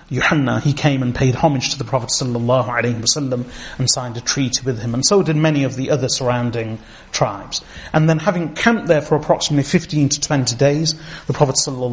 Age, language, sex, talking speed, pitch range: 30-49, English, male, 180 wpm, 125-155 Hz